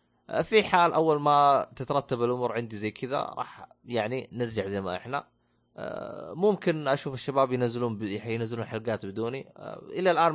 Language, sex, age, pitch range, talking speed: Arabic, male, 20-39, 100-125 Hz, 140 wpm